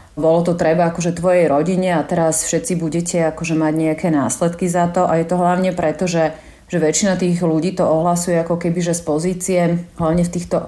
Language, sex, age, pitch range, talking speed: Slovak, female, 30-49, 160-180 Hz, 200 wpm